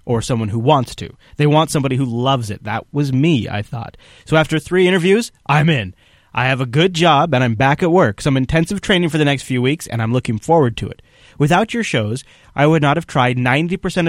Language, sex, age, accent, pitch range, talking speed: English, male, 30-49, American, 125-170 Hz, 235 wpm